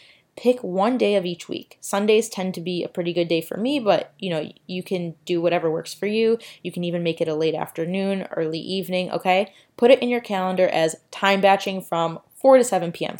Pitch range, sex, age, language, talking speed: 175-210 Hz, female, 20-39, English, 225 wpm